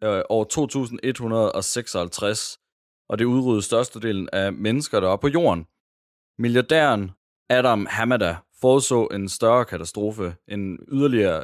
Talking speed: 110 wpm